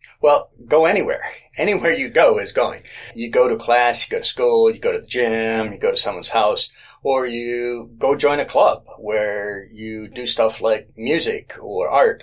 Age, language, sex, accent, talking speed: 40-59, English, male, American, 195 wpm